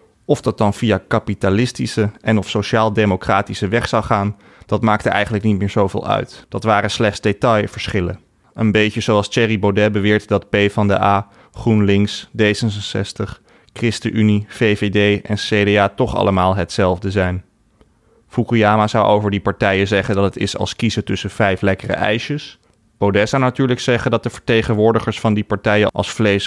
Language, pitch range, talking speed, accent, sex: Dutch, 100-115 Hz, 150 wpm, Dutch, male